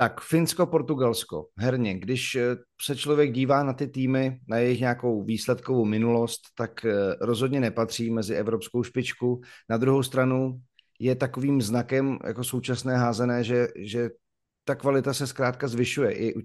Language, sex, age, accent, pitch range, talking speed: Czech, male, 40-59, native, 115-130 Hz, 140 wpm